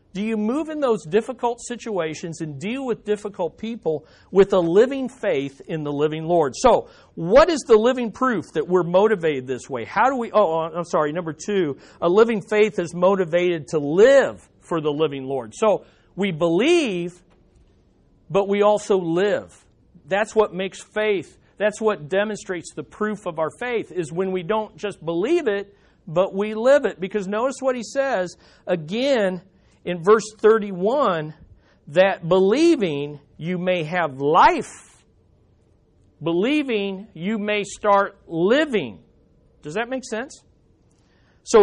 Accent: American